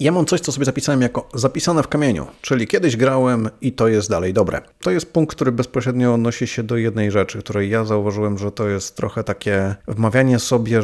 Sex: male